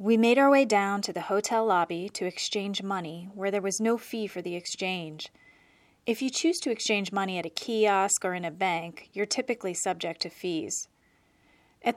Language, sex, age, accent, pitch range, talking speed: English, female, 30-49, American, 180-225 Hz, 195 wpm